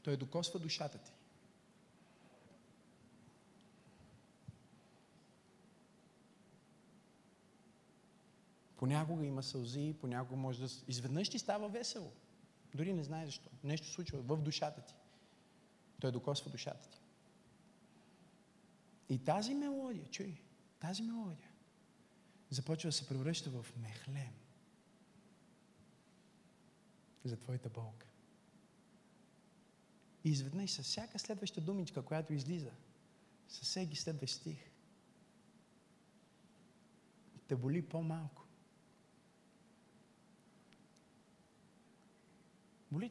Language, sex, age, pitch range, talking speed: Bulgarian, male, 40-59, 160-215 Hz, 80 wpm